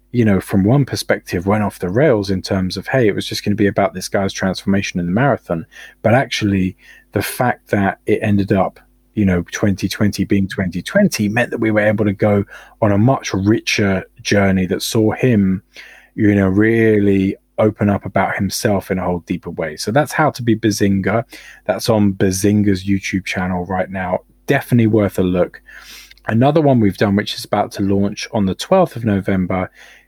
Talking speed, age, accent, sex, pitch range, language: 195 wpm, 20-39, British, male, 95-115 Hz, English